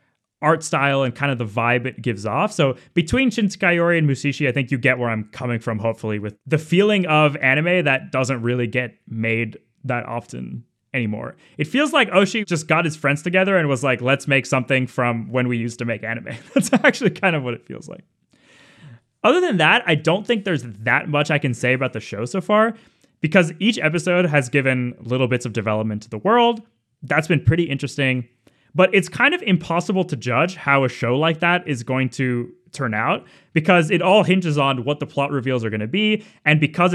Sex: male